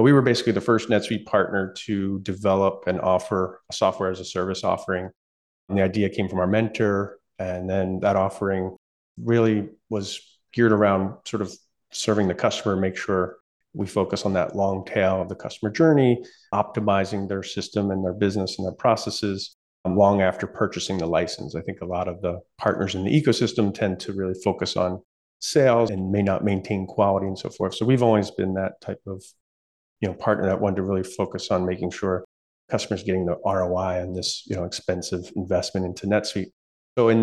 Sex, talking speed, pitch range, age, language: male, 190 wpm, 95-105 Hz, 40-59, English